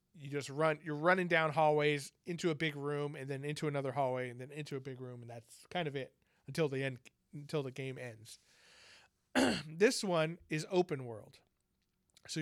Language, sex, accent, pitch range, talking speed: English, male, American, 140-160 Hz, 195 wpm